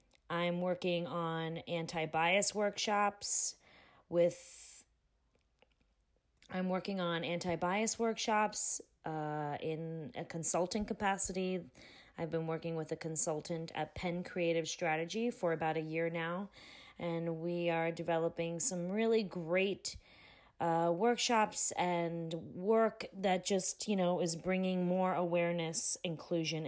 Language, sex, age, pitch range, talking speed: English, female, 20-39, 165-190 Hz, 115 wpm